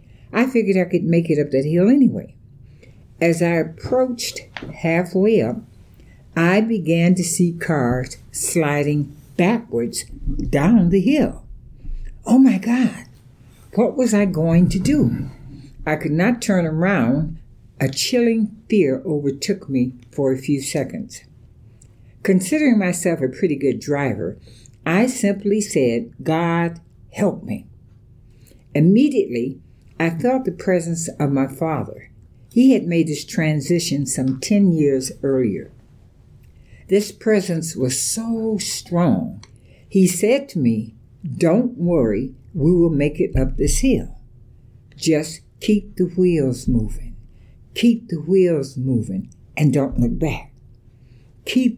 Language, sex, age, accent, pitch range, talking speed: English, female, 60-79, American, 125-185 Hz, 125 wpm